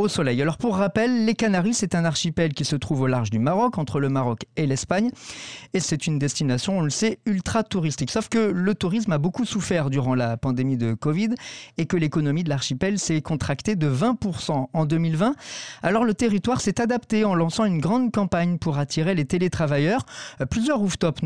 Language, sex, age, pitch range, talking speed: French, male, 40-59, 145-205 Hz, 190 wpm